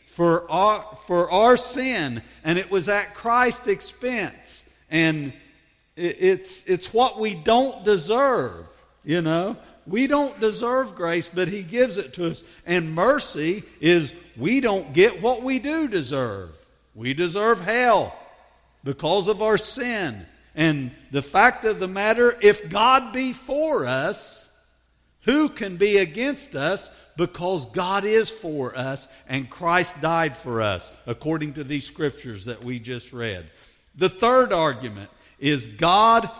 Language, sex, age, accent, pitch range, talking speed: English, male, 50-69, American, 145-220 Hz, 140 wpm